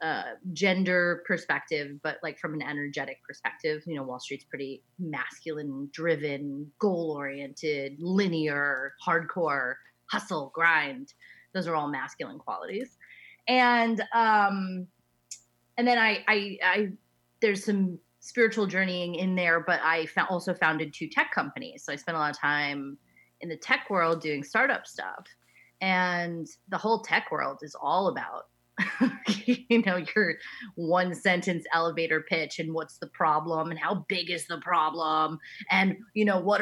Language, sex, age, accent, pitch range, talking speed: English, female, 30-49, American, 150-185 Hz, 145 wpm